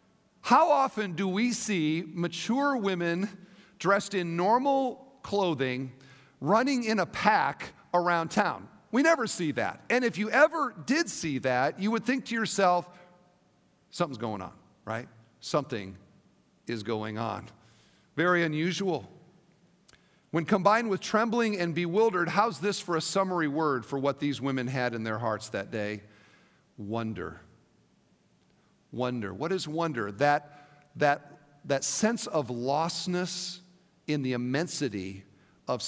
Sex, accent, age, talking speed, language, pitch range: male, American, 50-69, 130 wpm, English, 140-190 Hz